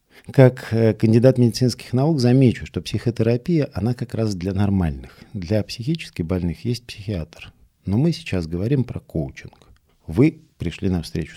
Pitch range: 90-120 Hz